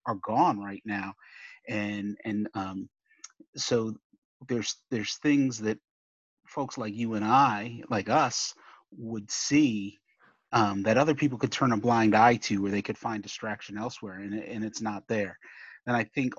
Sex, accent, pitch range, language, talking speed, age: male, American, 105-125 Hz, English, 165 wpm, 30-49